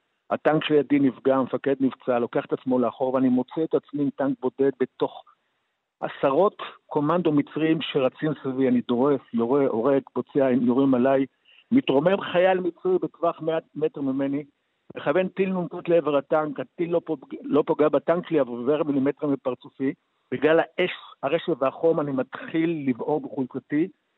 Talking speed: 150 wpm